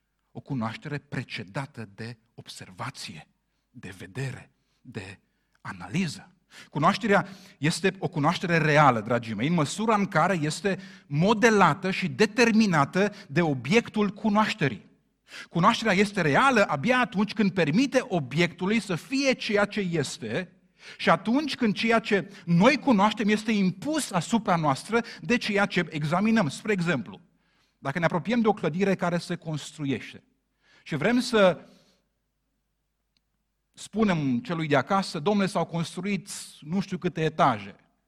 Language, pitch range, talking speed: Romanian, 170-225 Hz, 125 wpm